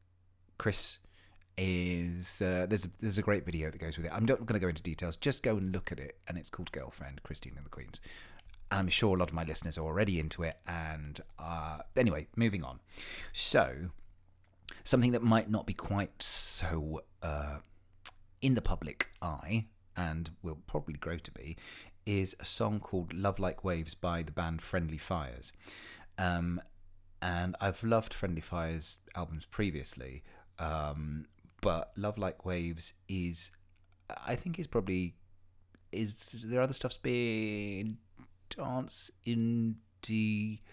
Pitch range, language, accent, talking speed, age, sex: 85-110 Hz, English, British, 160 wpm, 30-49, male